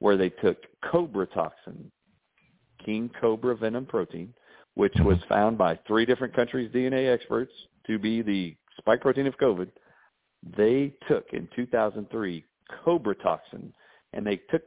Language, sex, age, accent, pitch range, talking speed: English, male, 50-69, American, 95-125 Hz, 140 wpm